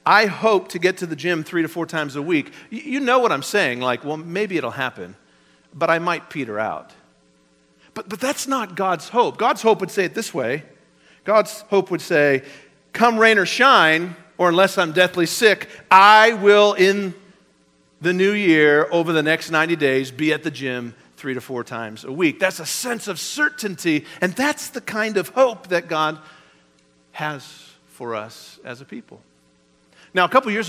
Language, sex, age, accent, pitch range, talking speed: English, male, 40-59, American, 125-190 Hz, 190 wpm